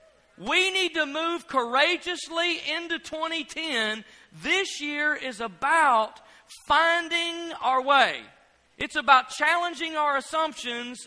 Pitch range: 215-280 Hz